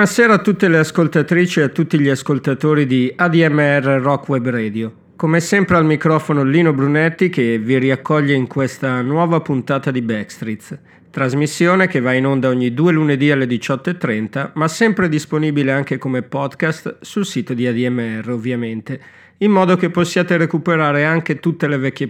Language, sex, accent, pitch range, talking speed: Italian, male, native, 135-175 Hz, 165 wpm